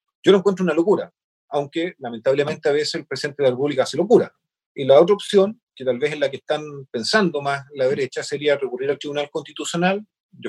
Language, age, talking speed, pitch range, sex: Spanish, 40-59, 210 wpm, 140-195 Hz, male